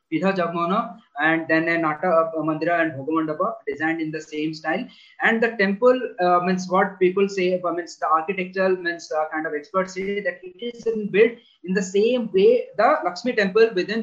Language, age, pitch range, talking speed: English, 20-39, 160-205 Hz, 185 wpm